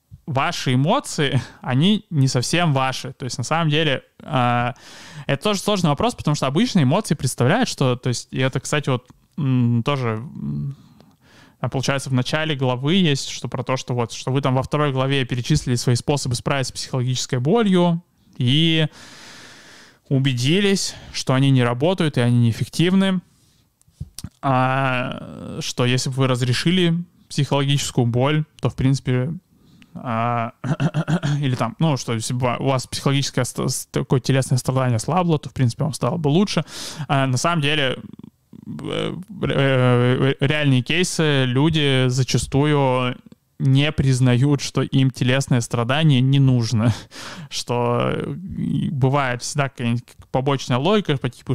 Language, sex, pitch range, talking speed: Russian, male, 125-150 Hz, 130 wpm